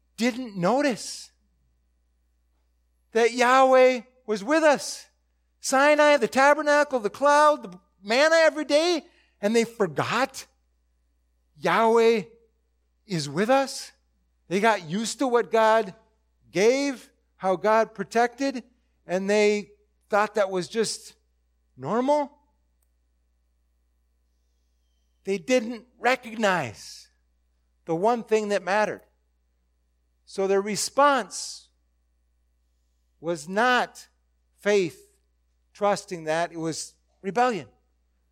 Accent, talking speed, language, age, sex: American, 90 wpm, English, 50-69, male